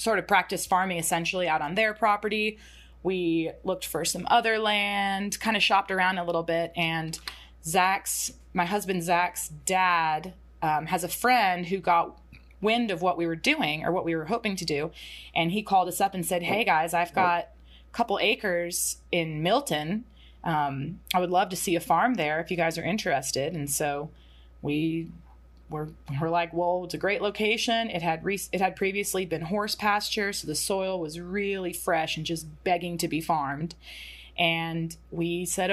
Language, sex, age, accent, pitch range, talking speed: English, female, 20-39, American, 155-195 Hz, 190 wpm